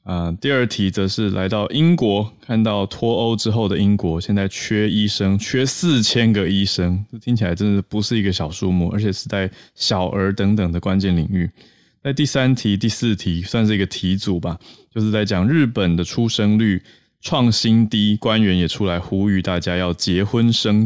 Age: 20-39